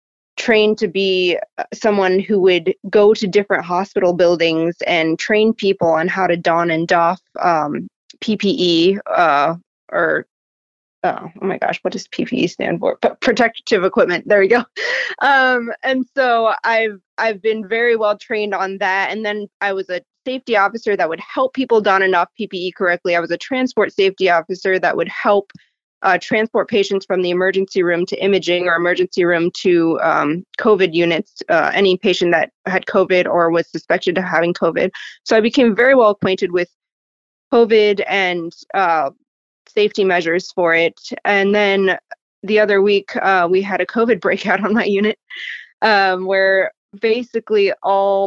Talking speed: 165 wpm